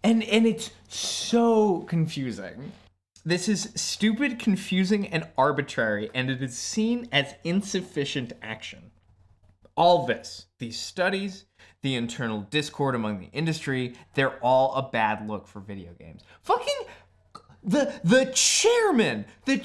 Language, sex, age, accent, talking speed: English, male, 20-39, American, 120 wpm